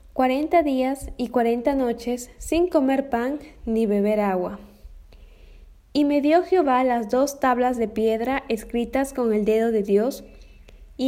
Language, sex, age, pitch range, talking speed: Spanish, female, 10-29, 215-270 Hz, 145 wpm